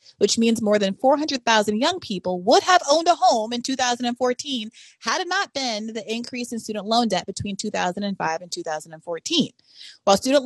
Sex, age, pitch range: female, 30-49, 180-245 Hz